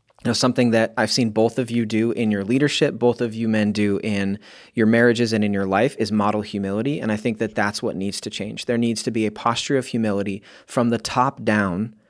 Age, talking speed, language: 30-49, 235 wpm, English